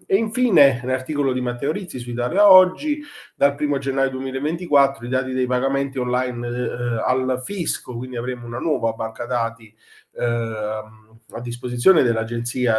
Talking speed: 145 wpm